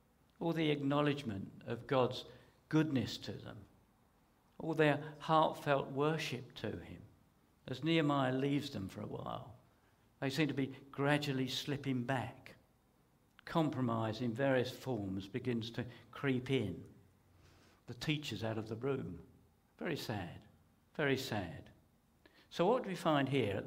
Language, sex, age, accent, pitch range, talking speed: English, male, 50-69, British, 115-140 Hz, 135 wpm